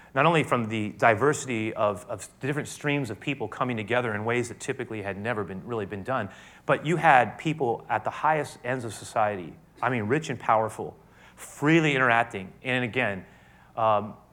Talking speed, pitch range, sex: 185 wpm, 115-155 Hz, male